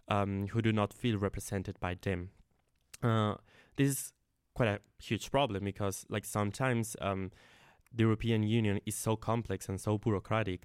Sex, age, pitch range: male, 20-39, 100-115 Hz